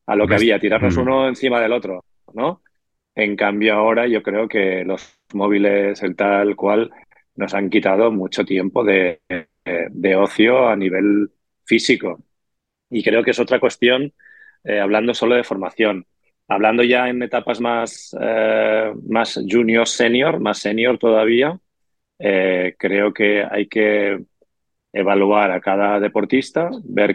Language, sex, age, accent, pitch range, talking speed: Spanish, male, 30-49, Spanish, 100-115 Hz, 145 wpm